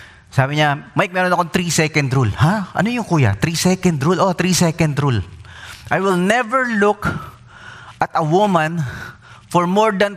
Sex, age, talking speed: male, 20-39, 160 wpm